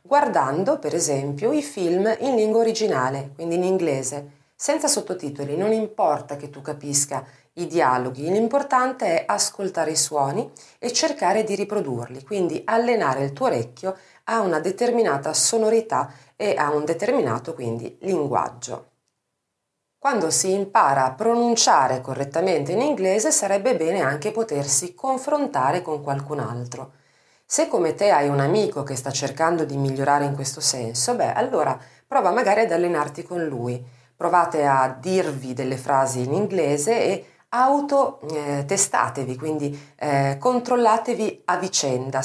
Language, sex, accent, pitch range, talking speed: Italian, female, native, 140-220 Hz, 140 wpm